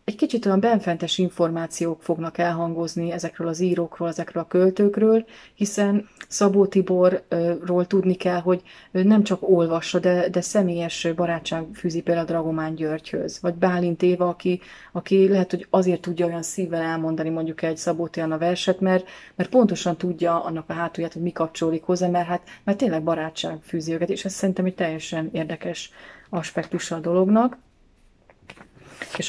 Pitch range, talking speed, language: 165-190 Hz, 155 wpm, Hungarian